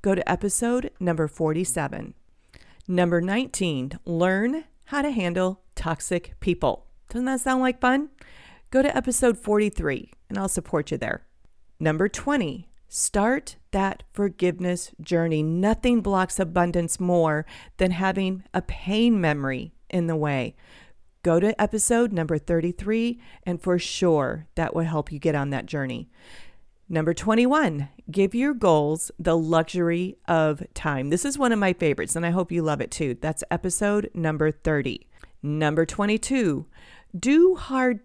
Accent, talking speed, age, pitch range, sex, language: American, 145 wpm, 40-59, 160-215 Hz, female, English